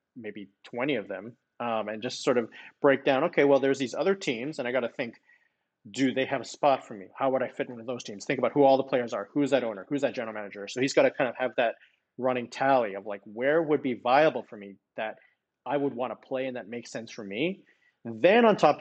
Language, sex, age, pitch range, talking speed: English, male, 30-49, 120-155 Hz, 270 wpm